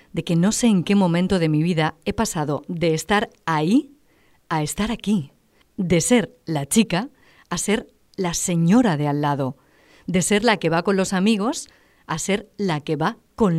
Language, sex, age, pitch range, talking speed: English, female, 40-59, 155-195 Hz, 190 wpm